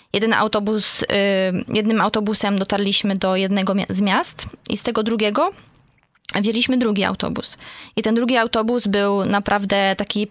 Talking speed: 135 wpm